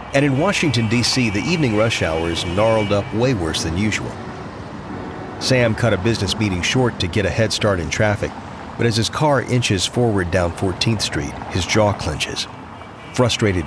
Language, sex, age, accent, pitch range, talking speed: English, male, 40-59, American, 95-120 Hz, 180 wpm